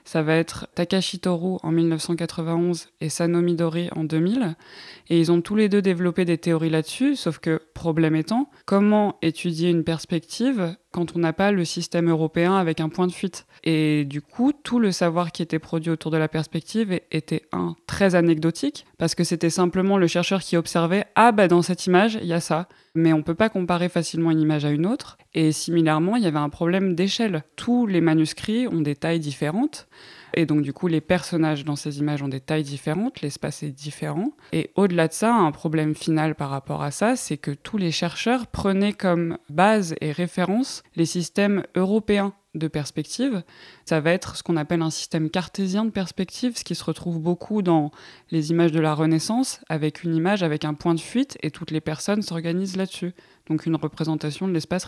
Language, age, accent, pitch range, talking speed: French, 20-39, French, 155-185 Hz, 205 wpm